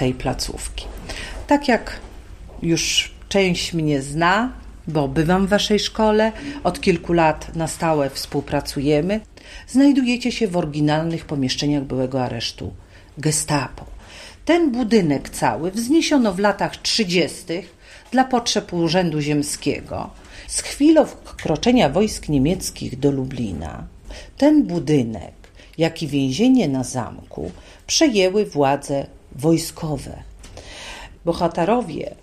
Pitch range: 135-210 Hz